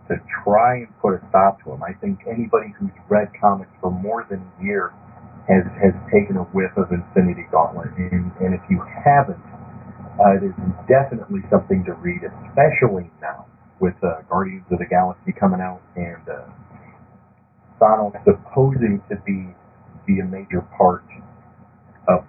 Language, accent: English, American